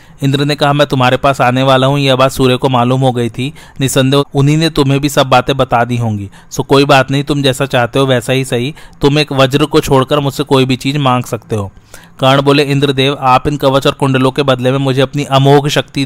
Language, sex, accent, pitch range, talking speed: Hindi, male, native, 130-145 Hz, 245 wpm